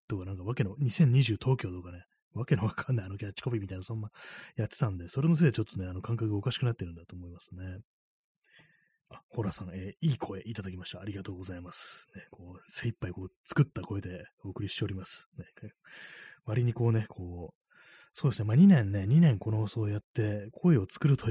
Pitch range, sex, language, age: 90-125 Hz, male, Japanese, 20-39